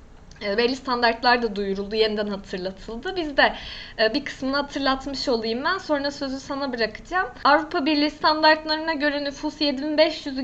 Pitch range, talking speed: 230-305 Hz, 130 wpm